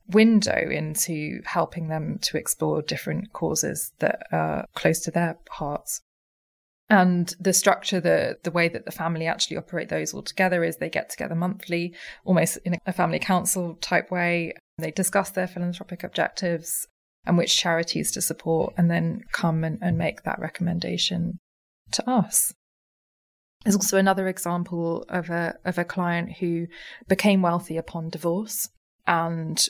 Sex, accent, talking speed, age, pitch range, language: female, British, 150 wpm, 20-39, 165-185 Hz, English